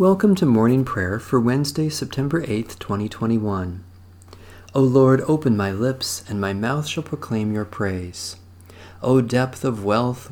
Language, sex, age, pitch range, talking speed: English, male, 40-59, 95-125 Hz, 145 wpm